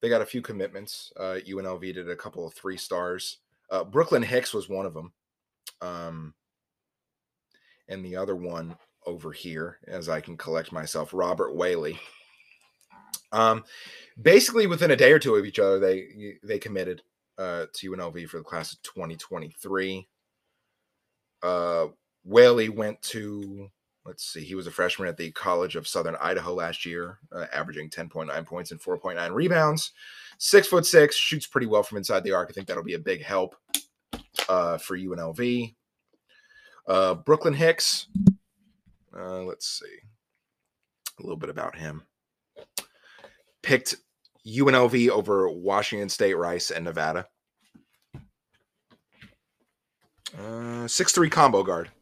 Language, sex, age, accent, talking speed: English, male, 30-49, American, 140 wpm